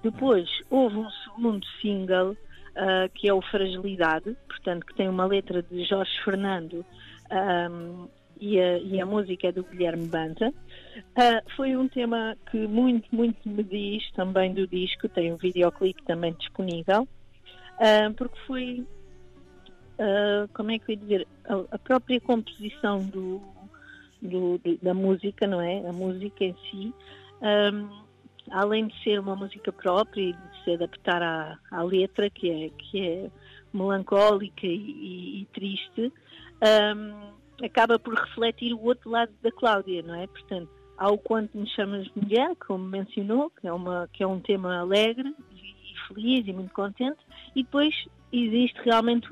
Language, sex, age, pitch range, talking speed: Portuguese, female, 50-69, 185-225 Hz, 140 wpm